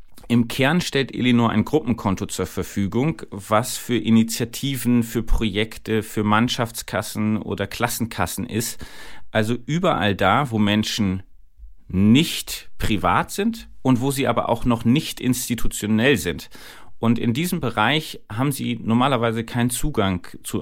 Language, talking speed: German, 130 wpm